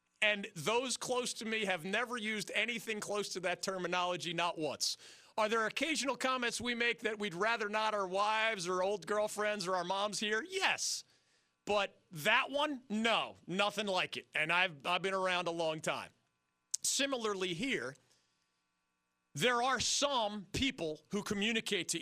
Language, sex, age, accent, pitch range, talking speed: English, male, 40-59, American, 155-210 Hz, 160 wpm